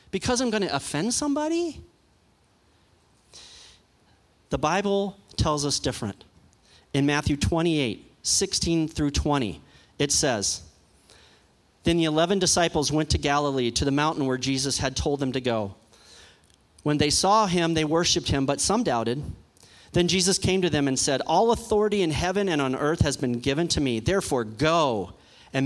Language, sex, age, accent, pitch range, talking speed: English, male, 40-59, American, 120-165 Hz, 160 wpm